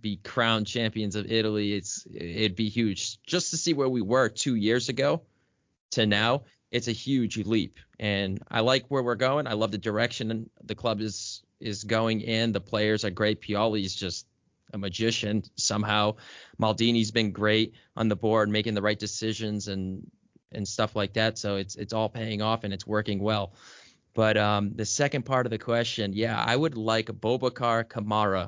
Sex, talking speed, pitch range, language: male, 190 wpm, 100-115 Hz, English